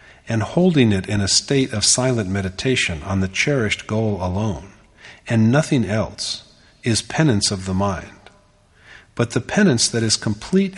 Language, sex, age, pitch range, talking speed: English, male, 50-69, 95-125 Hz, 155 wpm